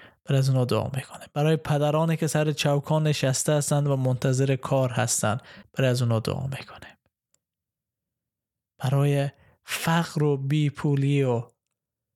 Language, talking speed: Persian, 130 wpm